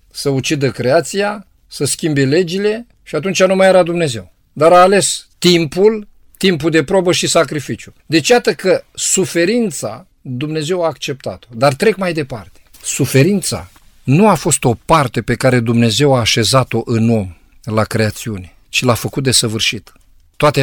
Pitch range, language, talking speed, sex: 110-140 Hz, Romanian, 155 wpm, male